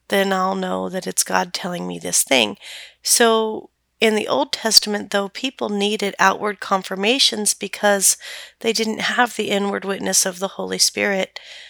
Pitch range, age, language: 190-215 Hz, 40-59, English